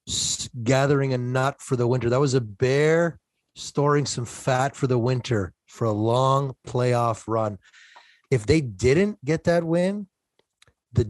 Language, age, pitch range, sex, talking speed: English, 30-49, 115-145 Hz, male, 150 wpm